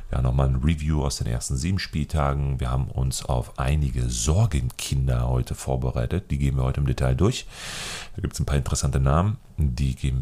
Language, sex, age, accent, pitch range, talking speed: German, male, 30-49, German, 65-80 Hz, 205 wpm